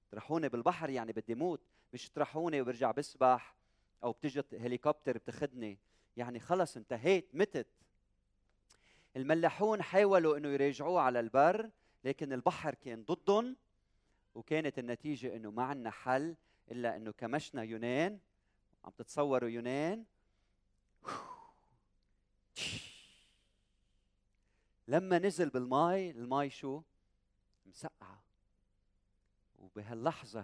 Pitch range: 100-145 Hz